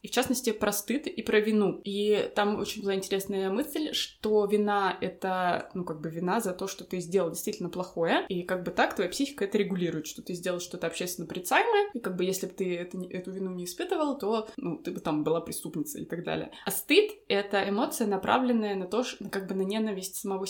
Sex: female